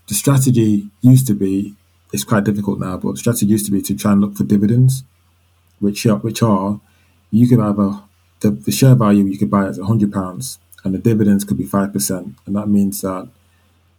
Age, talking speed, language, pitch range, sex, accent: 20-39, 195 wpm, English, 95-105 Hz, male, British